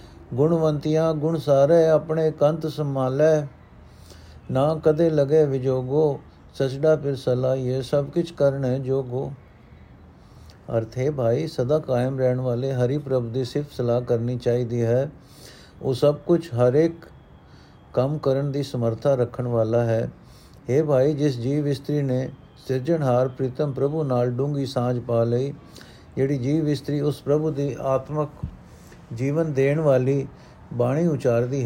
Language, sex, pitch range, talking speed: Punjabi, male, 125-150 Hz, 135 wpm